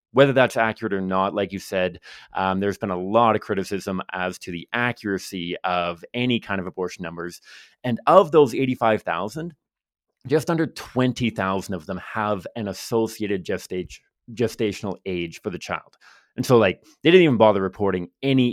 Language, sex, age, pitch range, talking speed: English, male, 30-49, 95-125 Hz, 165 wpm